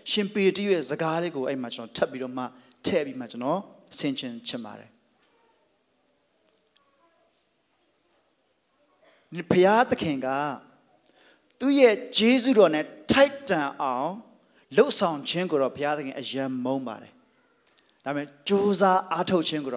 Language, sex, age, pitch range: English, male, 40-59, 130-185 Hz